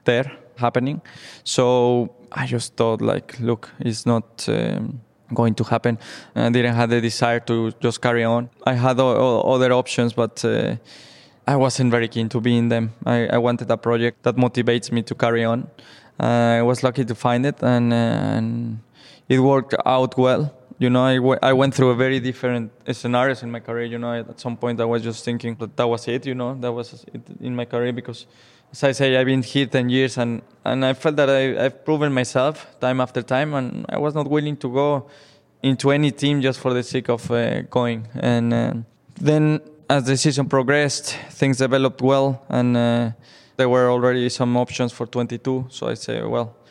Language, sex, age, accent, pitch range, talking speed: English, male, 20-39, Spanish, 120-135 Hz, 210 wpm